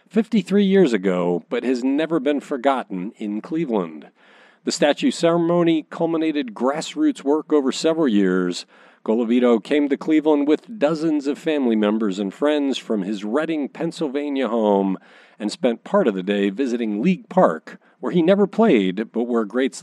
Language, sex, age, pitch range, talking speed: English, male, 50-69, 115-185 Hz, 155 wpm